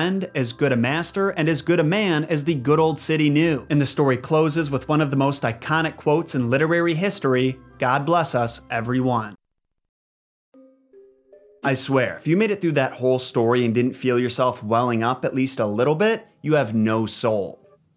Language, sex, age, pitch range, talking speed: English, male, 30-49, 120-160 Hz, 195 wpm